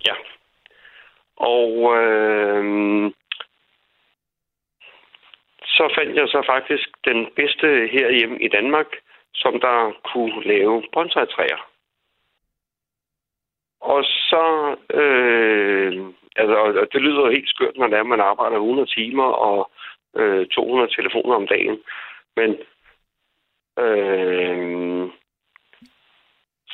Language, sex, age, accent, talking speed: Danish, male, 60-79, native, 90 wpm